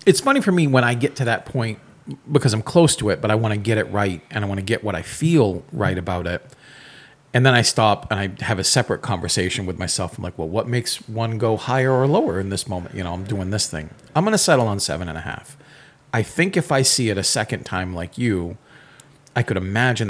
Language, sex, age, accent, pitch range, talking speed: English, male, 40-59, American, 100-140 Hz, 260 wpm